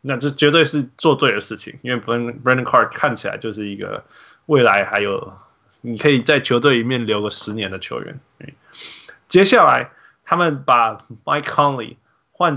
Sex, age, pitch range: male, 20-39, 115-145 Hz